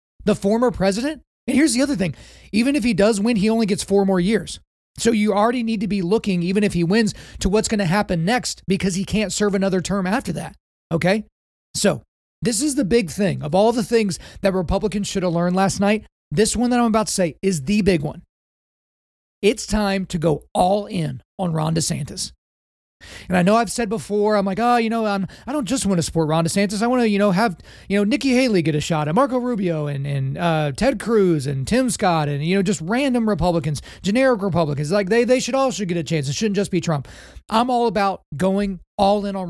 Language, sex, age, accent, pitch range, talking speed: English, male, 30-49, American, 165-220 Hz, 235 wpm